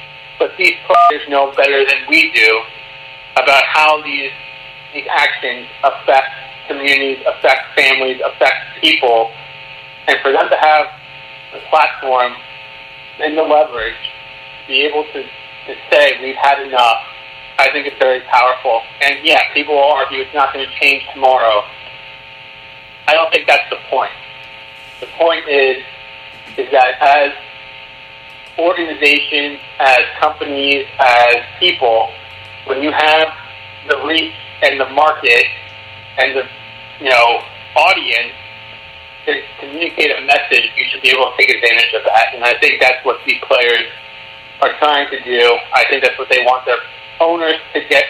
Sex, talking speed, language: male, 145 wpm, English